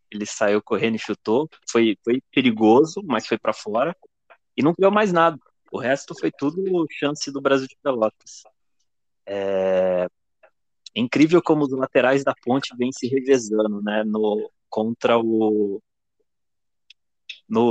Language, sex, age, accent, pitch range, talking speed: Portuguese, male, 20-39, Brazilian, 120-145 Hz, 140 wpm